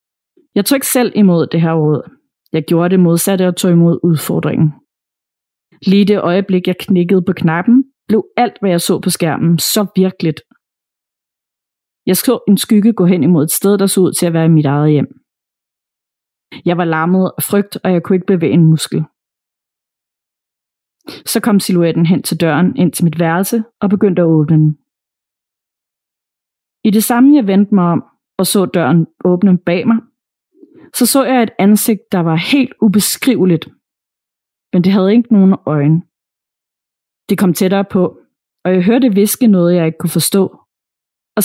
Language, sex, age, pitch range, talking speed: Danish, female, 30-49, 165-215 Hz, 170 wpm